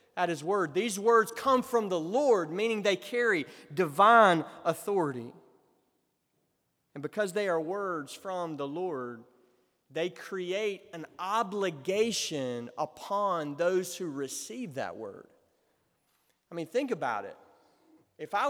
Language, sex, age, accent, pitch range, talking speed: English, male, 30-49, American, 175-260 Hz, 125 wpm